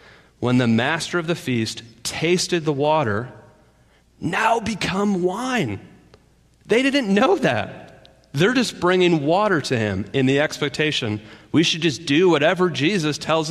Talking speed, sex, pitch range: 140 wpm, male, 110-160 Hz